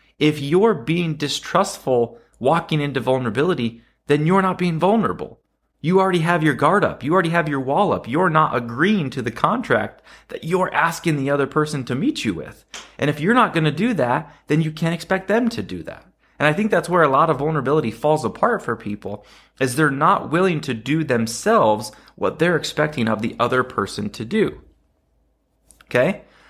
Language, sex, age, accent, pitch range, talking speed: English, male, 30-49, American, 120-170 Hz, 195 wpm